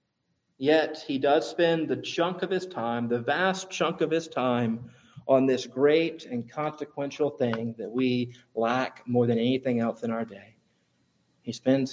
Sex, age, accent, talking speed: male, 40-59, American, 165 wpm